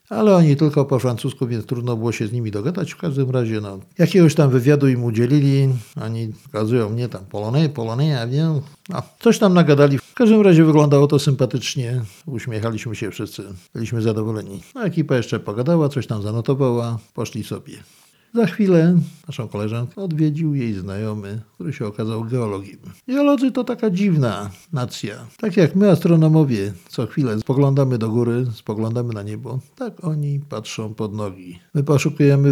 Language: Polish